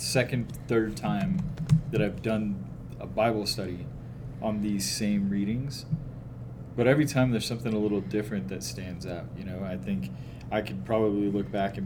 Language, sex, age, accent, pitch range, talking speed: English, male, 30-49, American, 105-125 Hz, 170 wpm